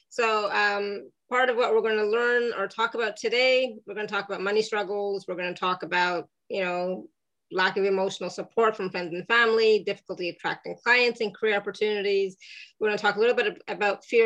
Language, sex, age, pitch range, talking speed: English, female, 30-49, 190-235 Hz, 210 wpm